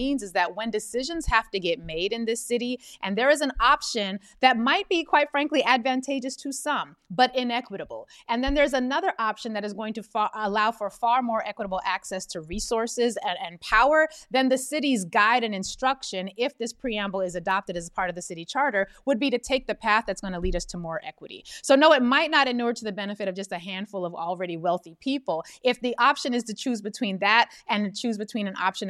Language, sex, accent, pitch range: English, female, American, 190-260 Hz